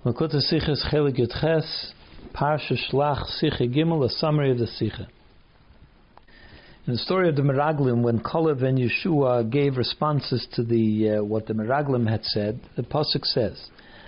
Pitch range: 120-155 Hz